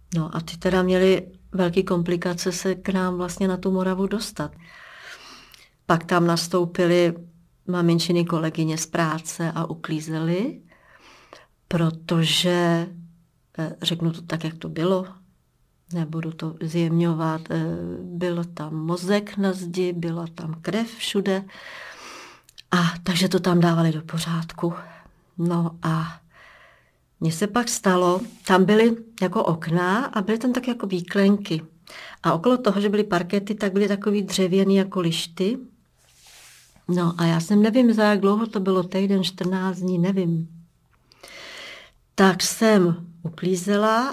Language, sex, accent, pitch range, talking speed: Czech, female, native, 170-205 Hz, 130 wpm